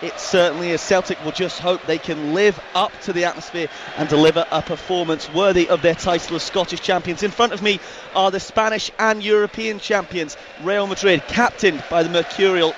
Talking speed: 195 wpm